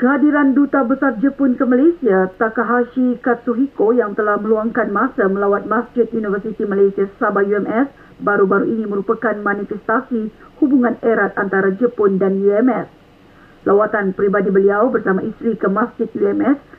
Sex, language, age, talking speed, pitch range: female, Malay, 50-69, 130 wpm, 210-265 Hz